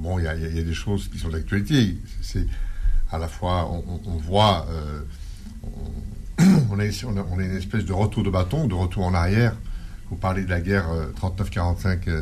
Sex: male